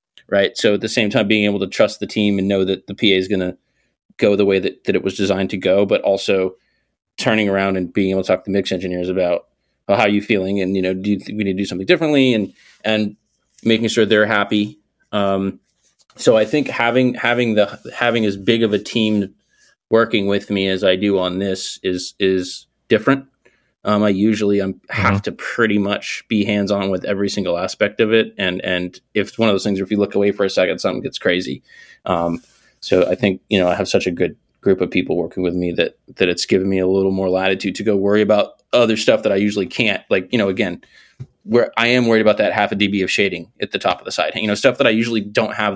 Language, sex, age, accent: English, male, 30-49, American